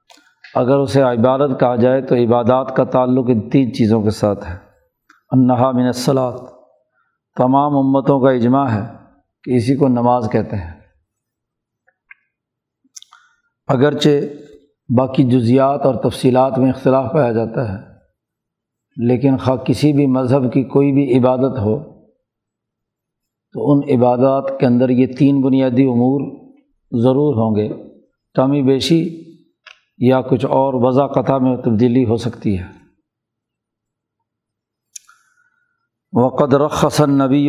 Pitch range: 120-140 Hz